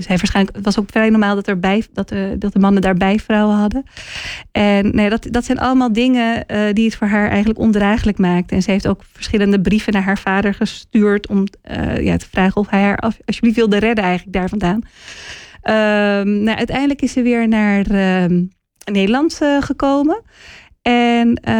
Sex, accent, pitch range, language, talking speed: female, Dutch, 200-235 Hz, Dutch, 190 wpm